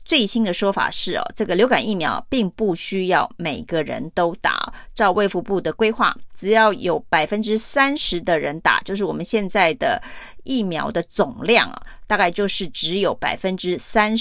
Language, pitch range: Chinese, 180-235 Hz